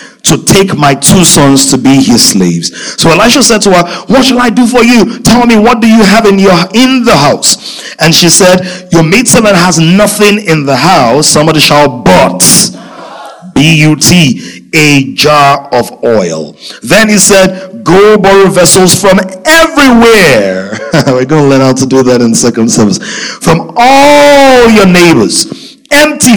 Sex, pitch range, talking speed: male, 175-245 Hz, 175 wpm